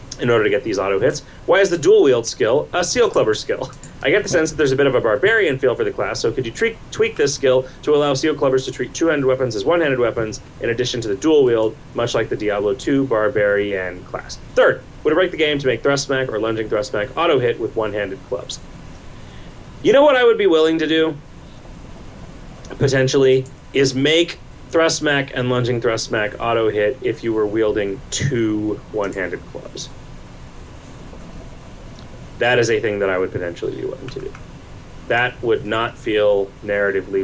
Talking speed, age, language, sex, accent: 200 wpm, 30-49, English, male, American